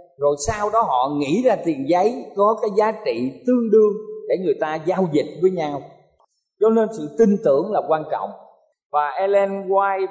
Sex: male